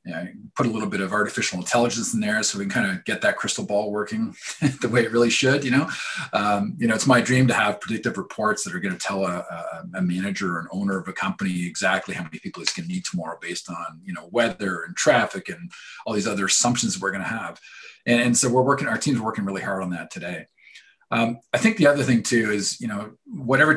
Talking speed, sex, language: 260 wpm, male, English